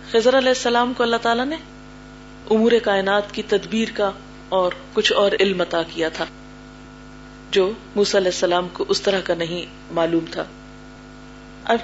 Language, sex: Urdu, female